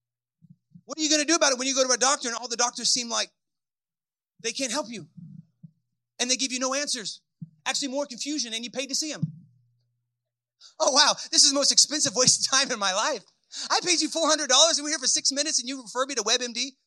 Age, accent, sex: 30-49, American, male